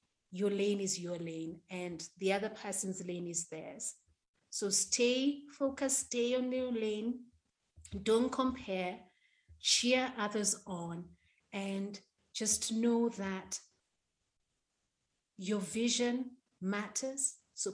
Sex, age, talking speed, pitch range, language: female, 30-49, 110 wpm, 180-225 Hz, English